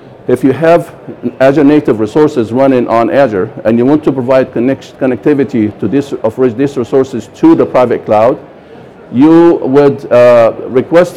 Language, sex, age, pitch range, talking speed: English, male, 50-69, 115-145 Hz, 155 wpm